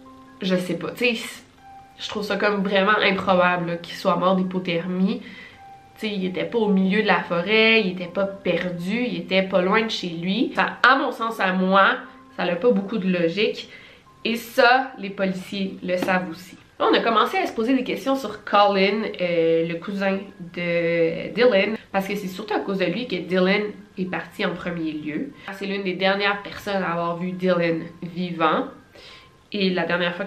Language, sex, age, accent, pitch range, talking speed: French, female, 20-39, Canadian, 180-210 Hz, 195 wpm